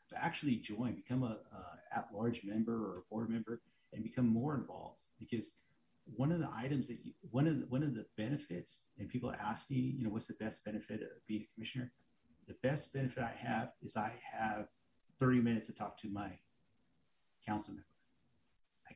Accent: American